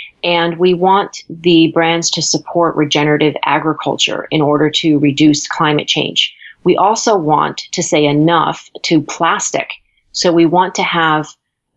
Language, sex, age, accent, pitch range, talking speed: English, female, 30-49, American, 155-175 Hz, 145 wpm